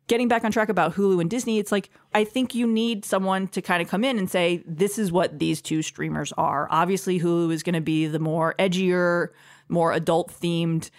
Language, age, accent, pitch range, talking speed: English, 30-49, American, 165-215 Hz, 220 wpm